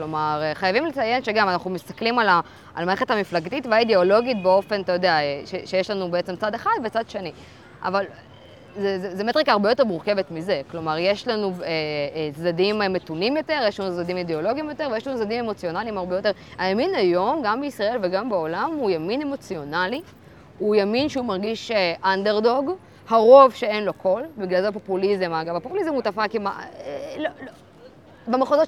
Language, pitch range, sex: Hebrew, 180-255 Hz, female